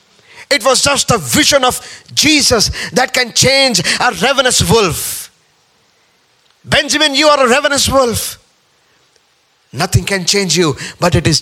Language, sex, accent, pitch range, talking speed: English, male, Indian, 135-215 Hz, 135 wpm